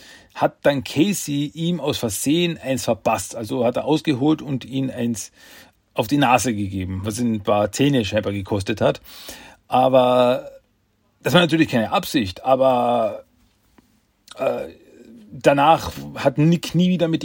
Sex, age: male, 40-59